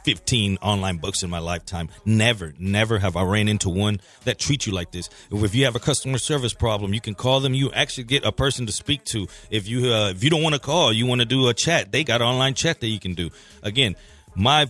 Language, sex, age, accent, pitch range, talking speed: English, male, 30-49, American, 105-140 Hz, 255 wpm